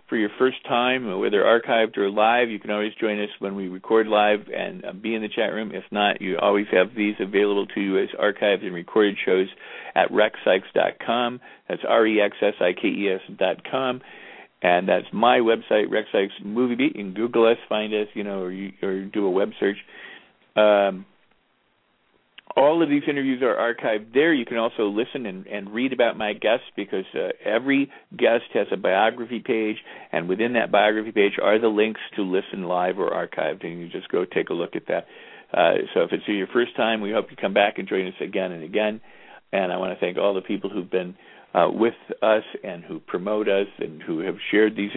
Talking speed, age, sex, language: 205 wpm, 50-69, male, English